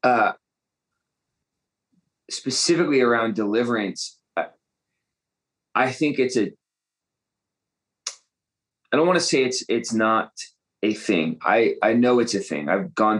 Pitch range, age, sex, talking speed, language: 90-115 Hz, 20-39, male, 125 wpm, English